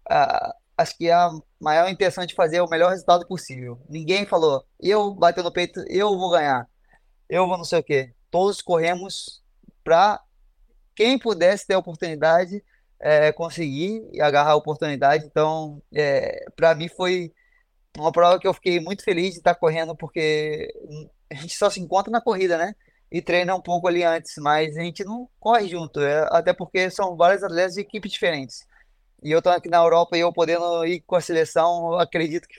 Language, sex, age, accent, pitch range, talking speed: Portuguese, male, 20-39, Brazilian, 155-185 Hz, 190 wpm